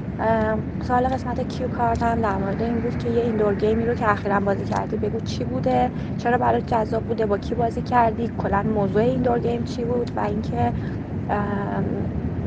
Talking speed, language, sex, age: 175 wpm, Persian, female, 20-39